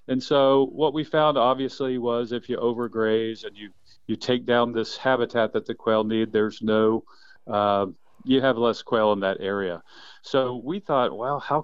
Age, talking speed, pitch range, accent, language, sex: 40-59, 185 wpm, 115-140 Hz, American, English, male